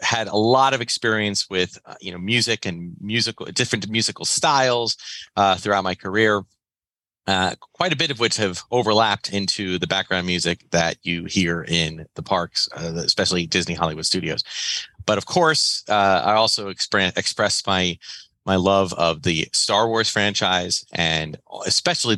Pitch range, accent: 85-105 Hz, American